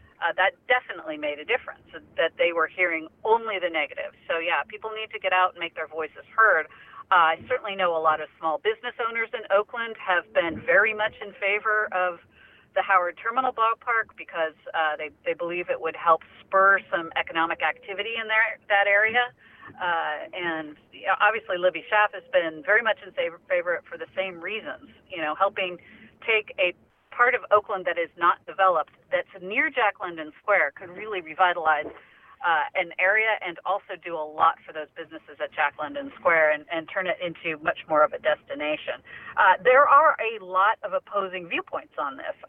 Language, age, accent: English, 40-59, American